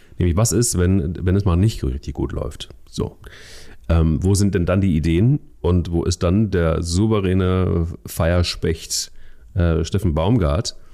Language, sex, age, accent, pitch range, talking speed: German, male, 40-59, German, 80-95 Hz, 160 wpm